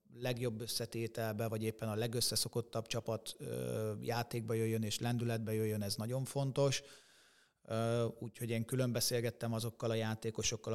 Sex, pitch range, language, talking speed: male, 110-120 Hz, Hungarian, 115 wpm